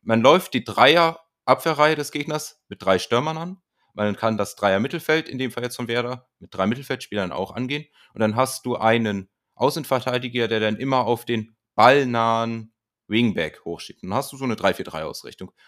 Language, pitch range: German, 105-130 Hz